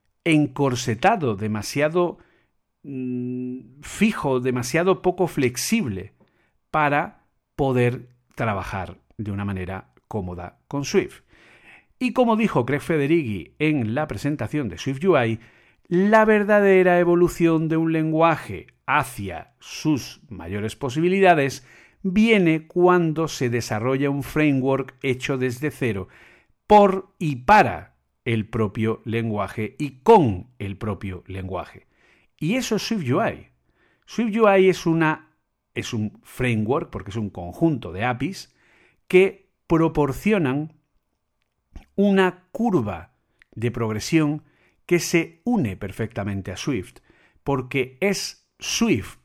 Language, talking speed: Spanish, 105 wpm